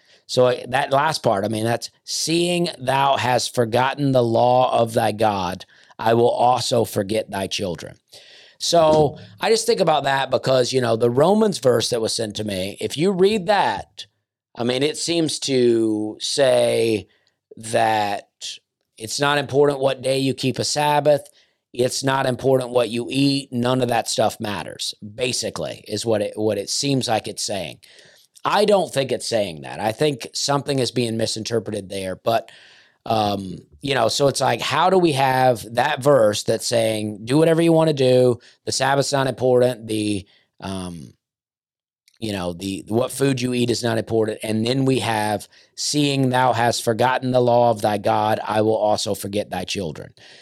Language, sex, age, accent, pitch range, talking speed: English, male, 40-59, American, 110-140 Hz, 175 wpm